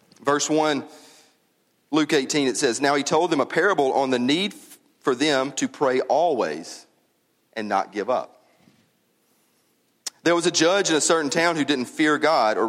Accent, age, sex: American, 40-59, male